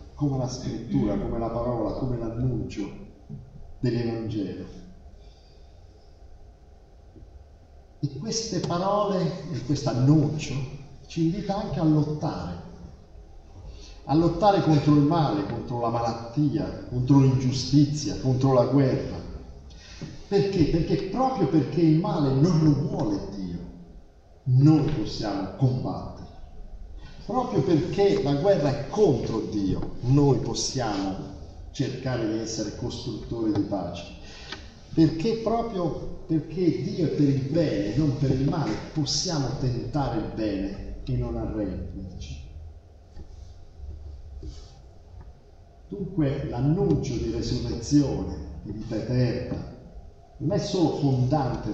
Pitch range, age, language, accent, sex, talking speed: 90-150 Hz, 50-69, Italian, native, male, 105 wpm